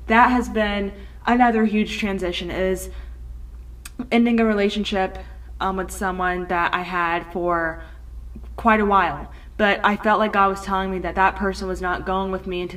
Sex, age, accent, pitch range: female, 20-39, American, 180-215 Hz